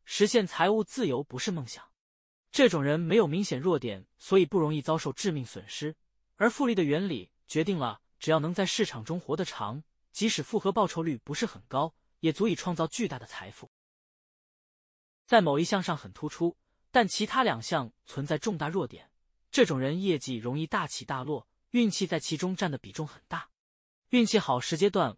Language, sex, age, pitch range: Chinese, male, 20-39, 135-200 Hz